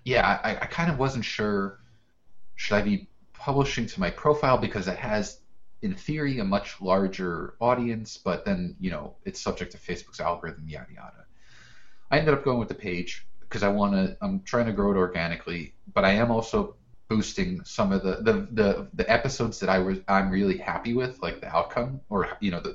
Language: English